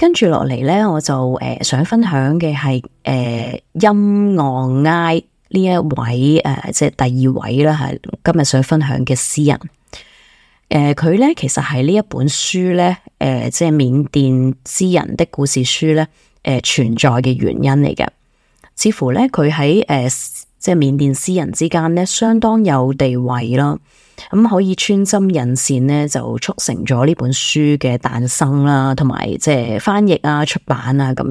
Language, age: Chinese, 20-39